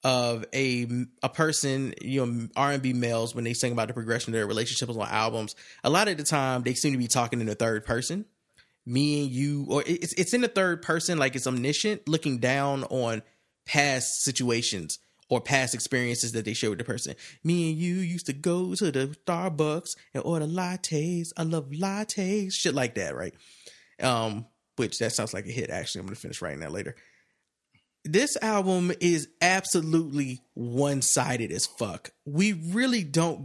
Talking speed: 185 wpm